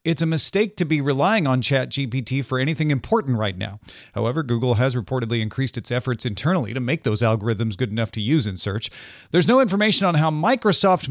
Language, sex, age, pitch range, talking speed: English, male, 40-59, 115-155 Hz, 200 wpm